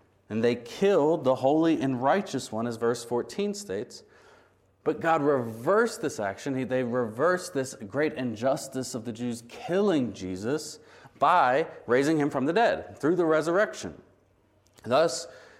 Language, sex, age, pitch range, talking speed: English, male, 30-49, 115-145 Hz, 140 wpm